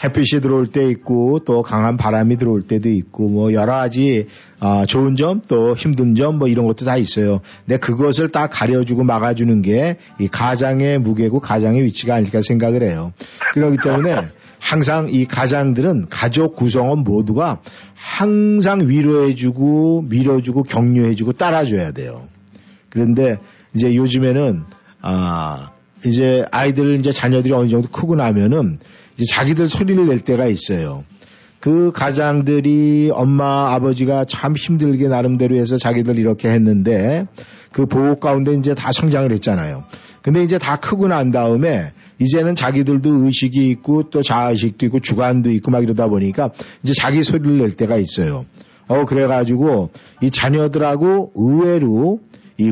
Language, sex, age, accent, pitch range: Korean, male, 50-69, native, 115-145 Hz